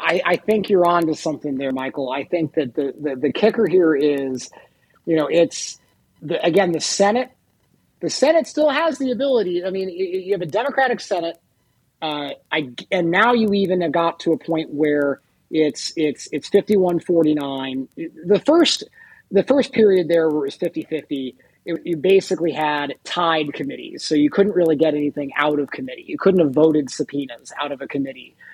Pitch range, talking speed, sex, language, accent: 145-185 Hz, 180 wpm, male, English, American